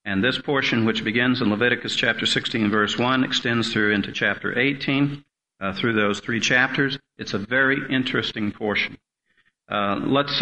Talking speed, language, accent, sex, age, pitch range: 160 wpm, English, American, male, 50-69, 105-130 Hz